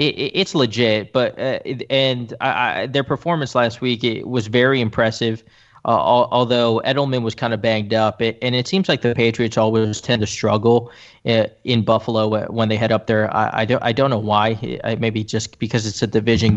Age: 20-39